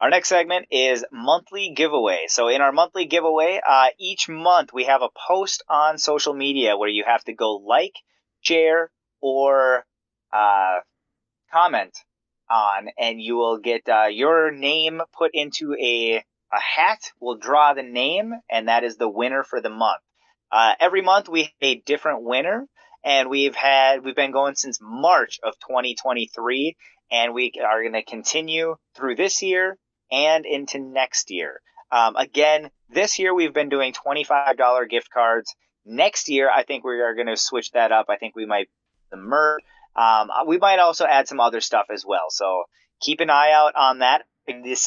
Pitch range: 115-160 Hz